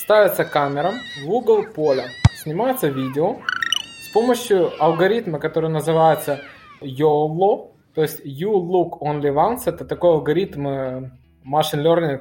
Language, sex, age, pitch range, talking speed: Russian, male, 20-39, 145-175 Hz, 120 wpm